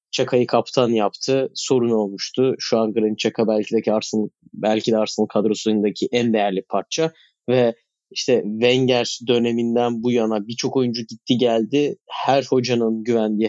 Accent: native